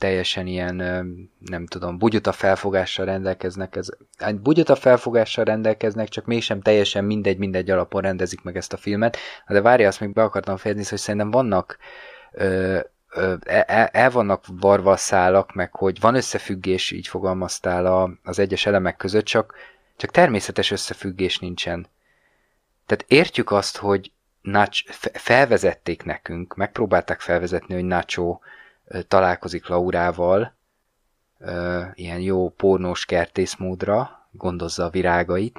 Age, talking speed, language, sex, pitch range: 20-39, 125 wpm, Hungarian, male, 90-100 Hz